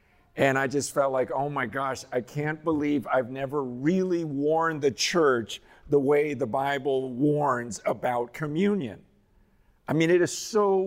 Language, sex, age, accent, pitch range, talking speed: English, male, 50-69, American, 150-210 Hz, 160 wpm